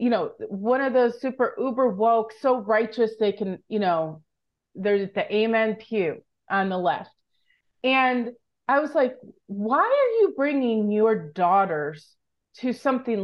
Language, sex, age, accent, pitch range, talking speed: English, female, 30-49, American, 200-255 Hz, 150 wpm